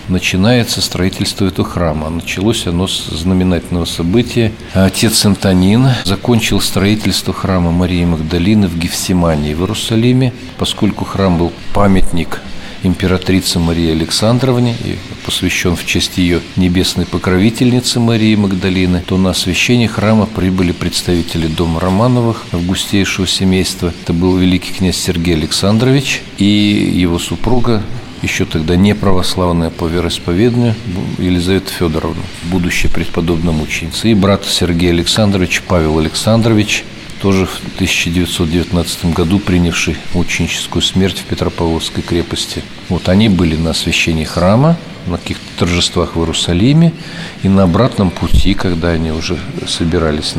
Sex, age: male, 50-69